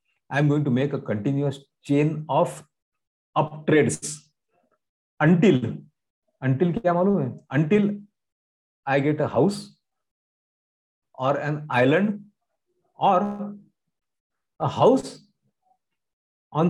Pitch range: 130-170 Hz